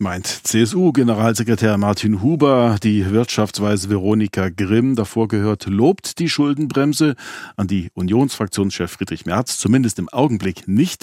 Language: German